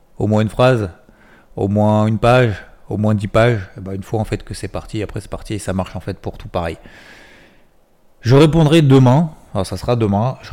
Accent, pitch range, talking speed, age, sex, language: French, 95-115 Hz, 220 wpm, 30-49, male, French